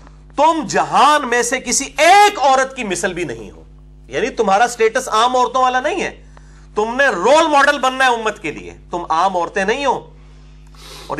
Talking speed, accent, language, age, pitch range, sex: 180 wpm, Indian, English, 40-59, 175-260 Hz, male